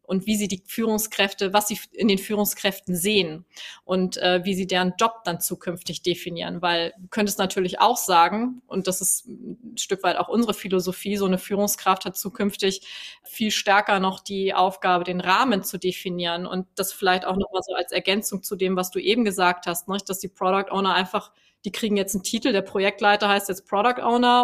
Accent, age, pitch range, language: German, 20-39, 185-210 Hz, German